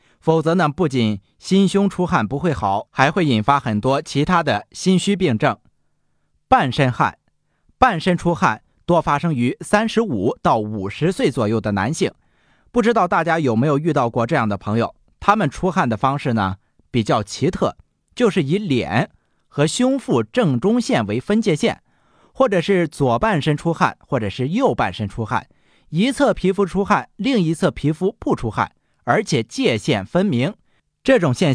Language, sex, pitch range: Chinese, male, 115-195 Hz